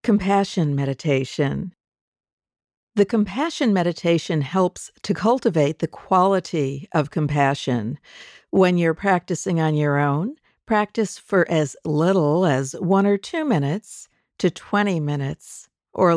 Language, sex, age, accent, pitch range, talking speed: English, female, 50-69, American, 150-195 Hz, 115 wpm